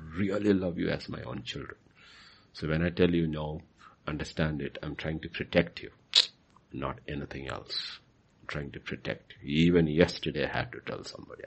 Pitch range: 75-90 Hz